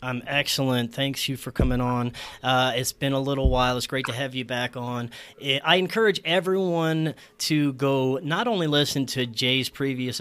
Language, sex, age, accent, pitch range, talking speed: English, male, 30-49, American, 120-145 Hz, 180 wpm